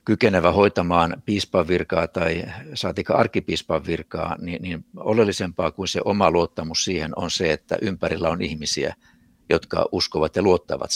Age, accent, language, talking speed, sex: 60-79, native, Finnish, 140 wpm, male